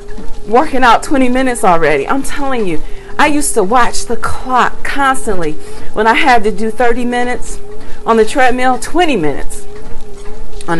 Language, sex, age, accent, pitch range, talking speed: English, female, 40-59, American, 185-250 Hz, 155 wpm